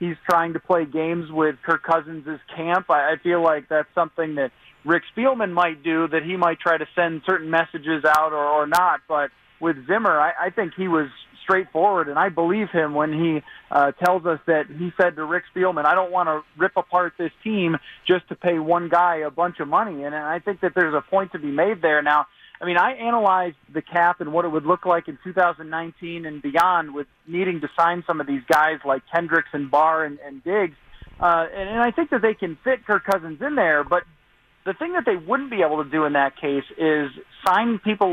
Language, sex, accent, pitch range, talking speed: English, male, American, 155-185 Hz, 225 wpm